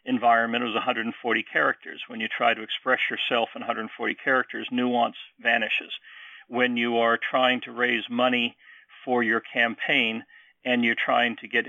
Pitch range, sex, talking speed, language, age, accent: 115-125 Hz, male, 155 wpm, English, 50-69, American